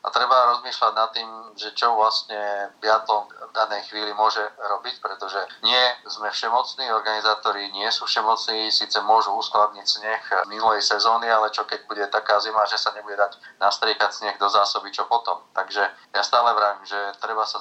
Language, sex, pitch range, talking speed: Slovak, male, 100-110 Hz, 175 wpm